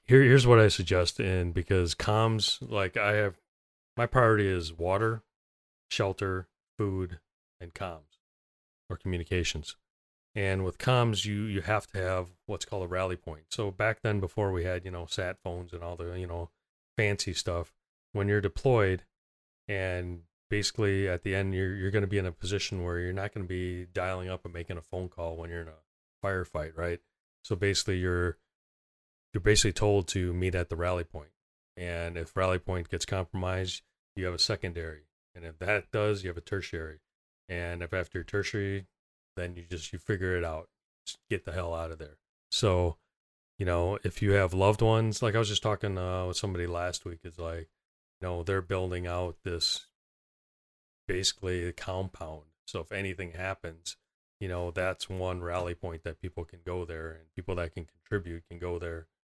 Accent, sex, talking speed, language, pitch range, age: American, male, 190 wpm, English, 85-100 Hz, 30-49